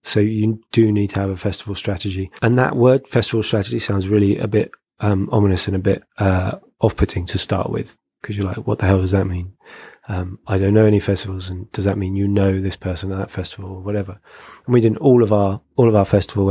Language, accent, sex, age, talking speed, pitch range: English, British, male, 20-39, 235 wpm, 95-110 Hz